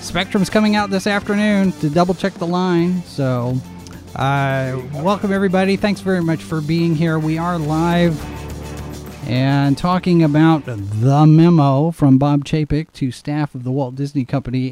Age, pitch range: 40-59, 135-165 Hz